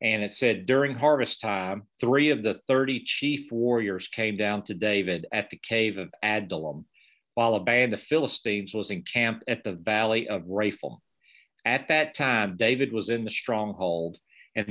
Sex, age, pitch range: male, 50-69, 105-125 Hz